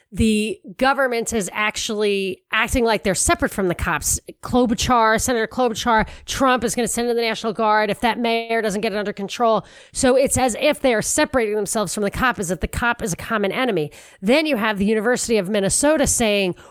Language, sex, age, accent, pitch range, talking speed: English, female, 40-59, American, 195-245 Hz, 210 wpm